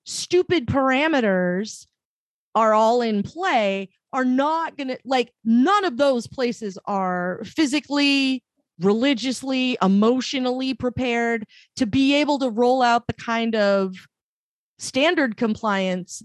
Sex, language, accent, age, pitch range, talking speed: female, English, American, 30-49, 205-265 Hz, 115 wpm